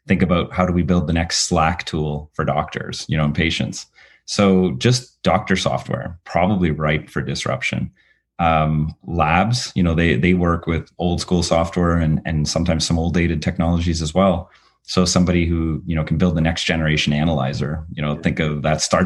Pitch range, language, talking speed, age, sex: 75-90 Hz, English, 190 wpm, 30-49, male